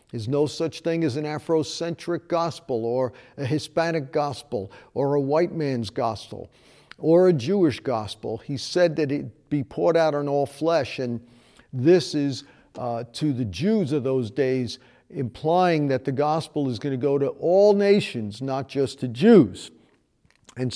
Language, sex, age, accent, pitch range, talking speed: English, male, 50-69, American, 125-155 Hz, 165 wpm